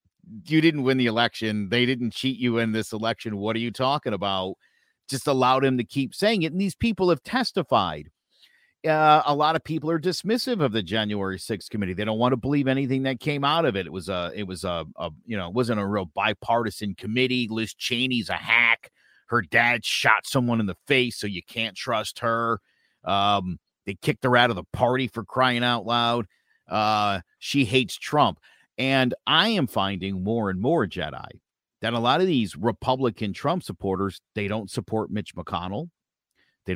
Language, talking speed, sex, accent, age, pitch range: English, 200 wpm, male, American, 50-69, 105-140 Hz